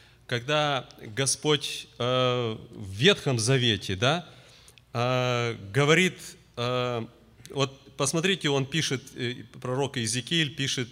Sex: male